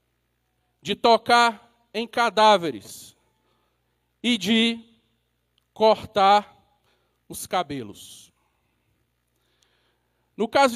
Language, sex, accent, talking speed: Portuguese, male, Brazilian, 60 wpm